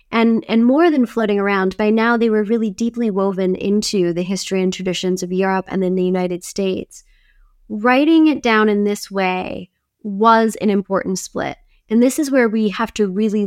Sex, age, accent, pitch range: female, 20-39, American, 190-235 Hz